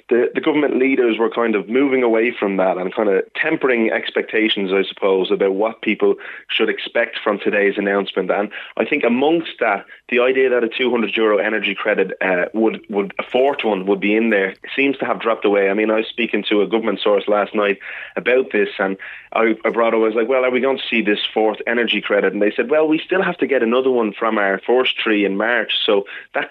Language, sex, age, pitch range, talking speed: English, male, 30-49, 105-130 Hz, 235 wpm